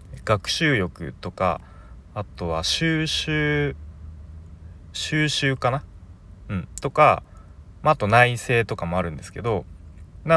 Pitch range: 85-125 Hz